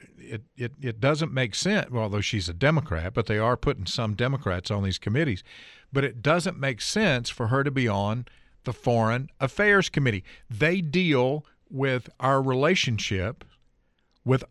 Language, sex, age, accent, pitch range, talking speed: English, male, 50-69, American, 105-140 Hz, 160 wpm